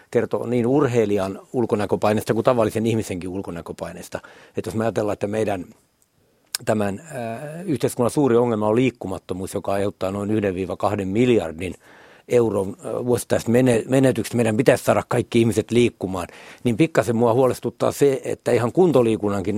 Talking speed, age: 130 wpm, 60-79